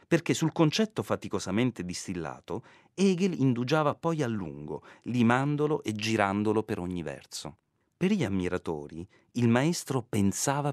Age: 40-59